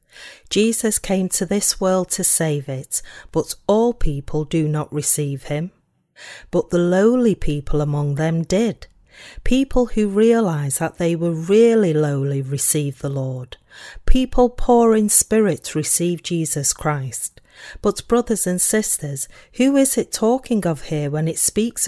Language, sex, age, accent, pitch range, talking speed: English, female, 40-59, British, 150-220 Hz, 145 wpm